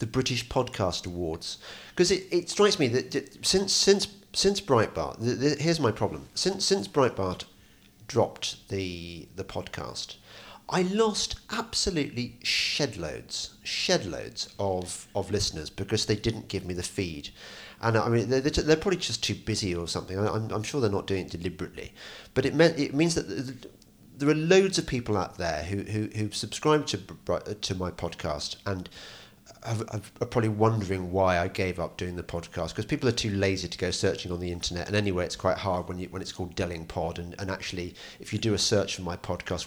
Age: 40-59